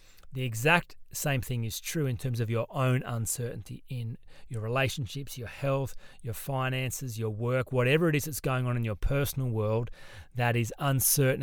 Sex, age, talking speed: male, 30-49, 180 wpm